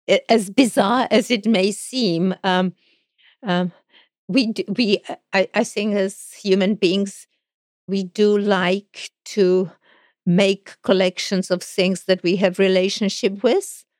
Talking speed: 125 wpm